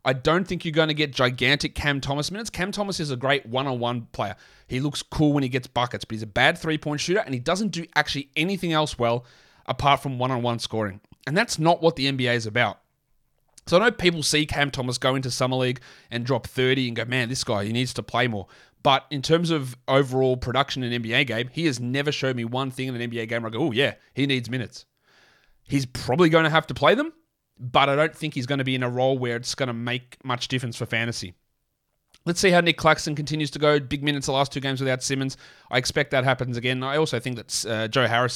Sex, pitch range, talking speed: male, 125-155 Hz, 250 wpm